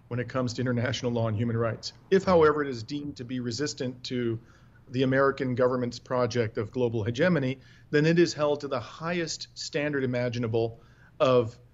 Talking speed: 180 wpm